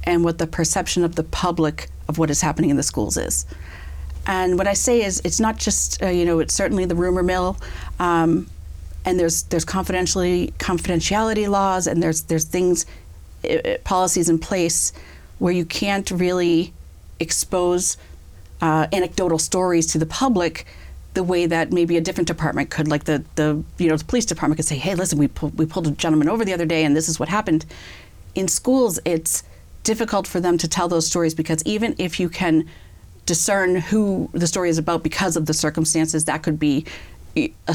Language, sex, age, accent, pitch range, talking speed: English, female, 40-59, American, 150-180 Hz, 195 wpm